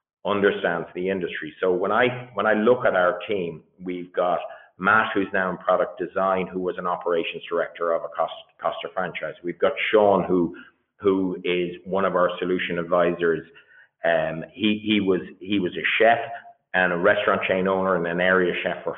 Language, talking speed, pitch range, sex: English, 185 wpm, 95-125 Hz, male